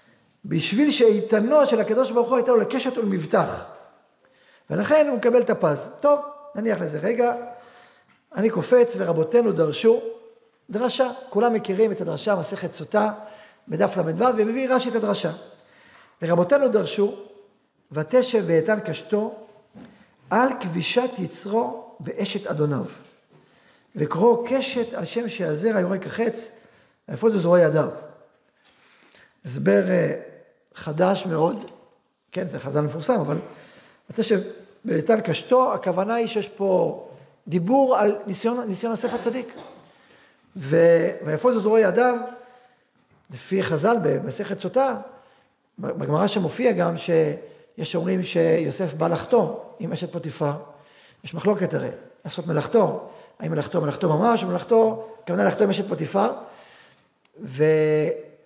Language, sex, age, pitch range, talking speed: Hebrew, male, 50-69, 175-245 Hz, 115 wpm